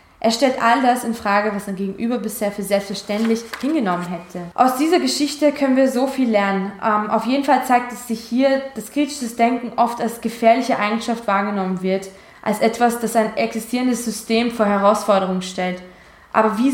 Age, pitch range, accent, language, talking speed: 20-39, 205-245 Hz, German, German, 175 wpm